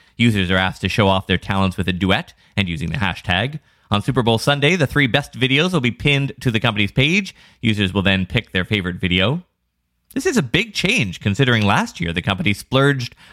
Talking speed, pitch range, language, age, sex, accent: 215 wpm, 95-135 Hz, English, 30-49, male, American